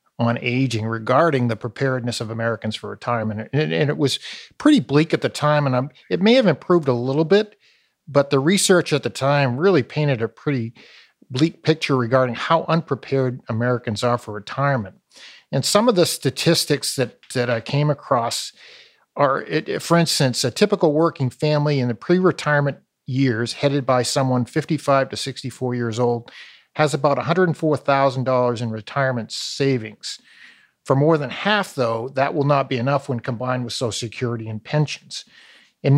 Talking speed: 160 wpm